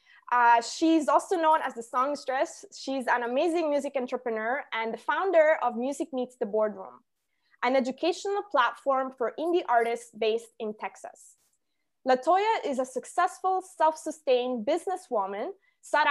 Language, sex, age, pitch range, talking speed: English, female, 20-39, 240-325 Hz, 135 wpm